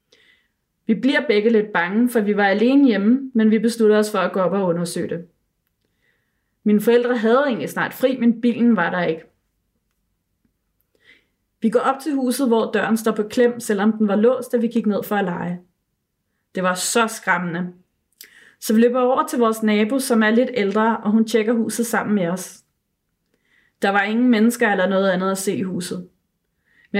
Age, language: 20-39, Danish